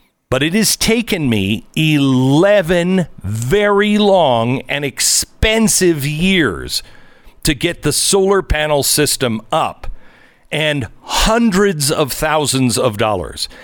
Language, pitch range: English, 125-185 Hz